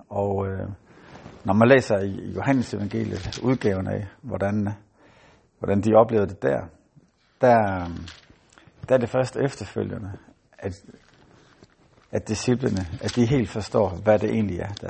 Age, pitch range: 60-79, 100-115 Hz